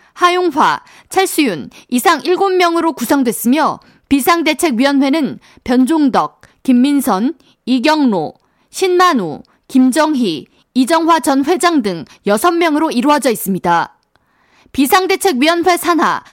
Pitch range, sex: 255-355 Hz, female